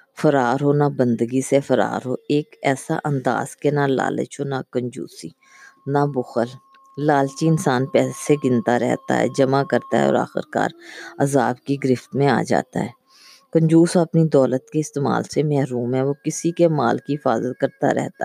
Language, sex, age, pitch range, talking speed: Urdu, female, 20-39, 130-150 Hz, 175 wpm